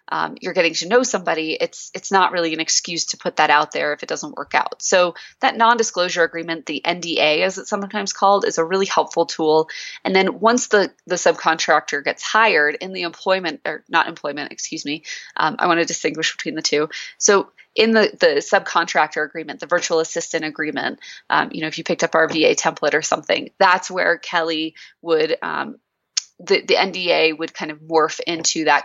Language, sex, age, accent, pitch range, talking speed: English, female, 20-39, American, 155-205 Hz, 200 wpm